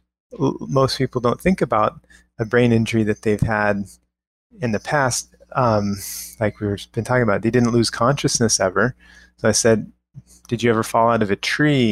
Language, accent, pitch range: English, American, 105-125 Hz